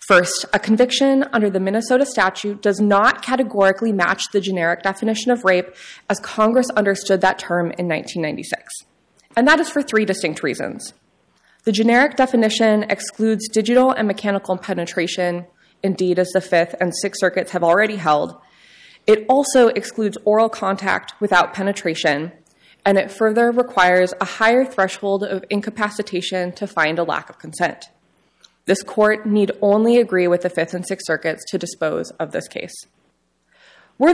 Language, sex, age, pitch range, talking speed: English, female, 20-39, 180-225 Hz, 155 wpm